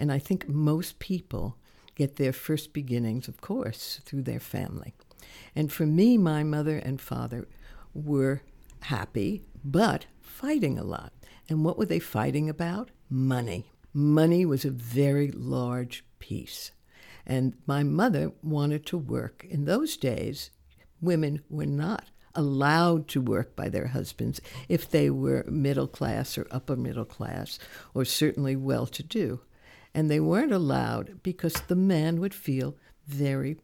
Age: 60-79